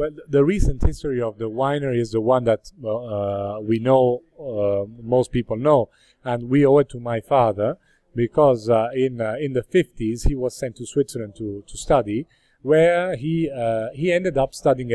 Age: 40-59